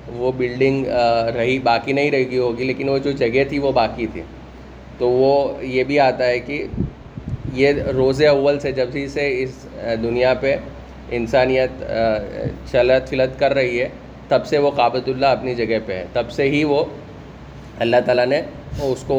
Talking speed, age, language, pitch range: 165 wpm, 30-49, Urdu, 115-135 Hz